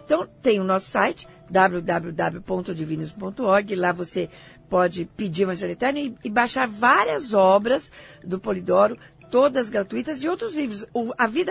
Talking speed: 140 wpm